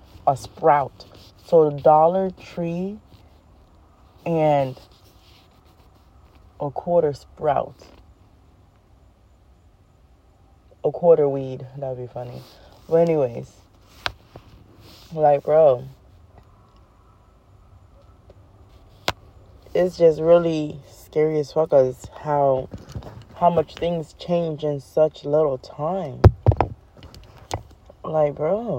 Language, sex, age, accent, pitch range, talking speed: English, female, 20-39, American, 95-155 Hz, 80 wpm